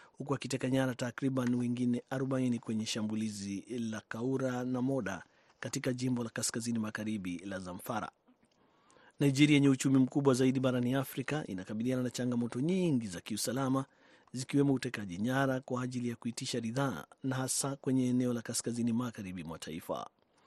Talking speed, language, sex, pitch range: 135 wpm, Swahili, male, 115-140 Hz